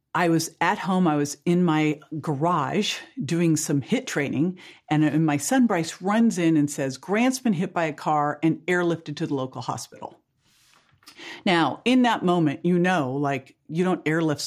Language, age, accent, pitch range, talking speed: English, 50-69, American, 140-170 Hz, 180 wpm